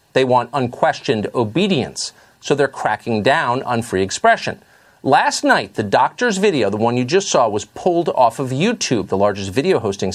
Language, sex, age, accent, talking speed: English, male, 50-69, American, 175 wpm